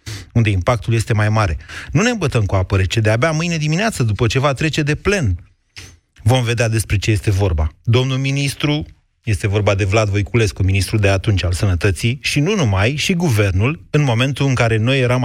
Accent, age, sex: native, 30-49, male